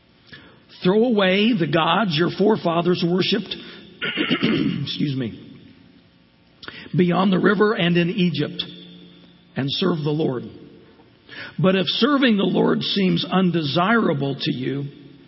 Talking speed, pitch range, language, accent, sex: 110 wpm, 140-200 Hz, English, American, male